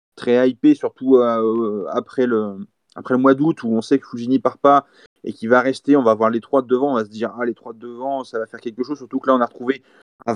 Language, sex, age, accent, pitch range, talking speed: French, male, 30-49, French, 120-140 Hz, 285 wpm